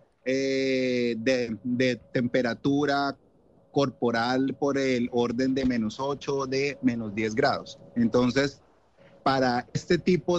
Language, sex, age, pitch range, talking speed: Spanish, male, 30-49, 125-145 Hz, 110 wpm